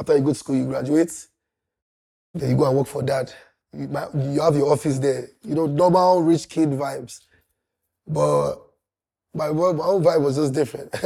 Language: English